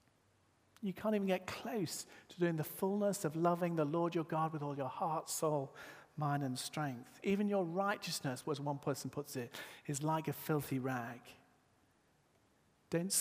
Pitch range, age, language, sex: 130-175 Hz, 40-59, English, male